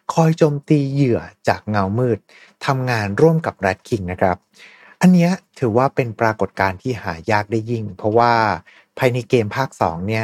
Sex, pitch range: male, 100-140 Hz